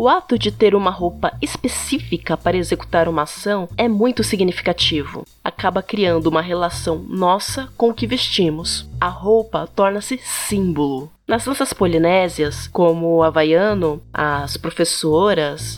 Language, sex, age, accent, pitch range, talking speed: Portuguese, female, 20-39, Brazilian, 165-225 Hz, 135 wpm